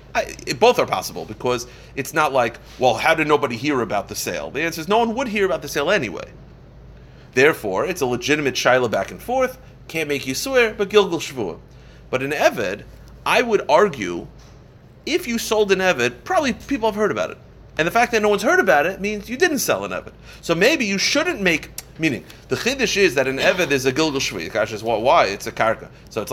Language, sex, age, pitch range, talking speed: English, male, 30-49, 125-210 Hz, 225 wpm